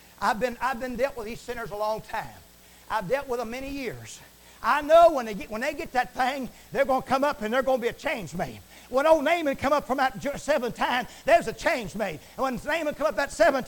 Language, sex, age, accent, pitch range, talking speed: English, male, 50-69, American, 255-350 Hz, 260 wpm